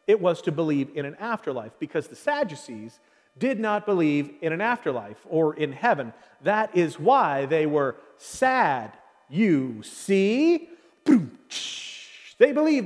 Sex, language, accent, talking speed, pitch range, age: male, English, American, 135 wpm, 165-250 Hz, 40-59